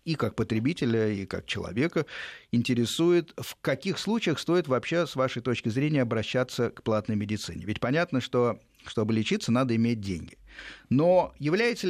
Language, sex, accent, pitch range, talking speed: Russian, male, native, 115-160 Hz, 150 wpm